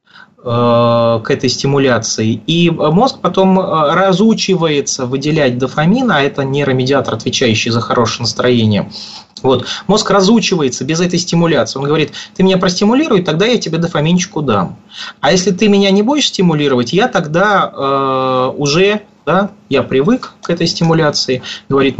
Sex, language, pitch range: male, Russian, 130-195 Hz